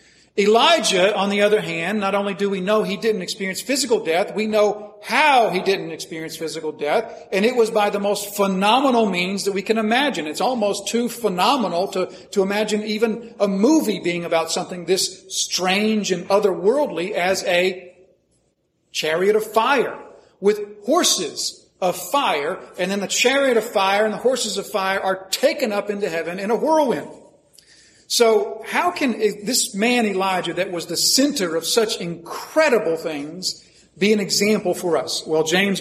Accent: American